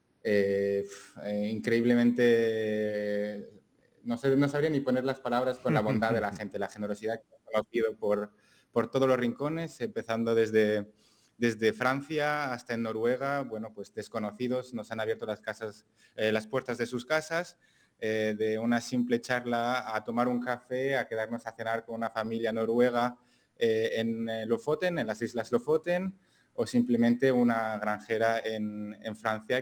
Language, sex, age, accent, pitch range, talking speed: Spanish, male, 20-39, Spanish, 110-125 Hz, 160 wpm